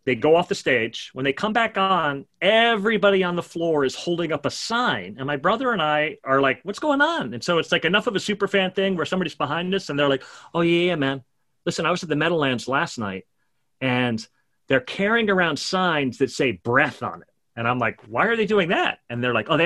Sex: male